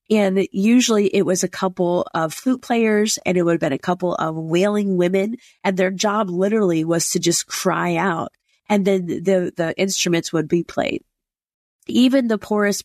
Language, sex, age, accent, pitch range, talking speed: English, female, 30-49, American, 170-200 Hz, 180 wpm